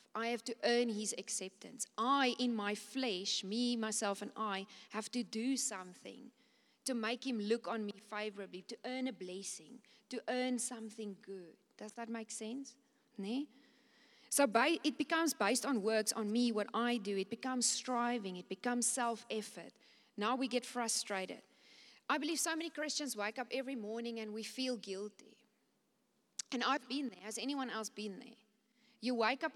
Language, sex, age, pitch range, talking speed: English, female, 40-59, 205-250 Hz, 170 wpm